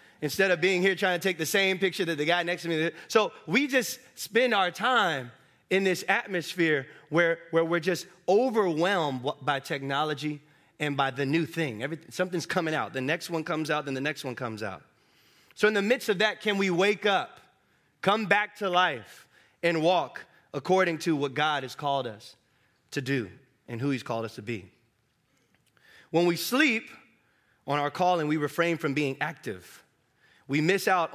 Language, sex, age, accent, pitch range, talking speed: English, male, 20-39, American, 150-200 Hz, 190 wpm